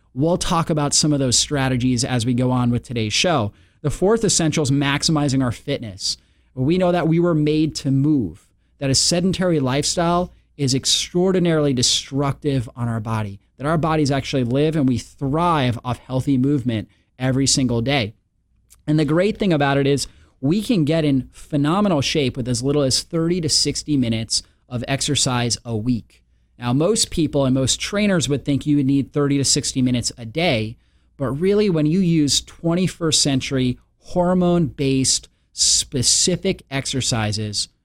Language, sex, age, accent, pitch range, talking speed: English, male, 30-49, American, 120-155 Hz, 165 wpm